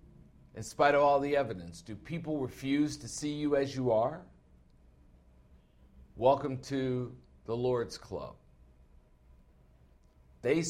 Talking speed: 120 wpm